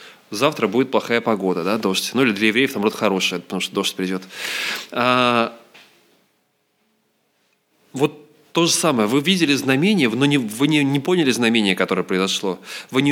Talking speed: 165 wpm